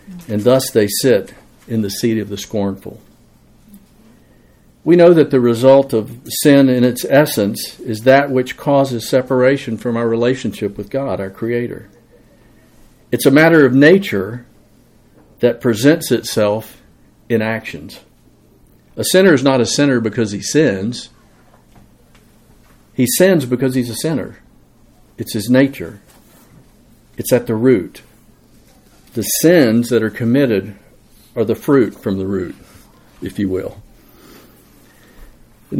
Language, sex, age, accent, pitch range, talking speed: English, male, 50-69, American, 110-135 Hz, 130 wpm